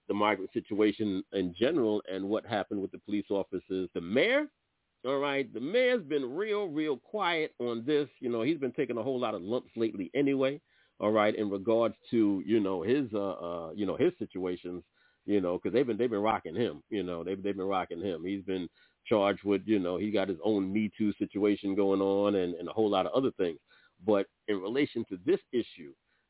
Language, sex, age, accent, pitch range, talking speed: English, male, 40-59, American, 95-120 Hz, 220 wpm